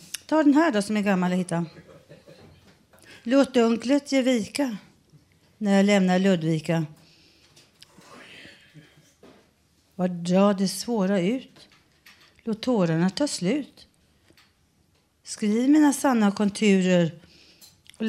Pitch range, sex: 185-225 Hz, female